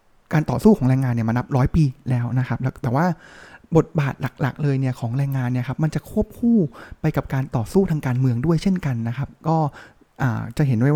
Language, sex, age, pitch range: Thai, male, 20-39, 125-165 Hz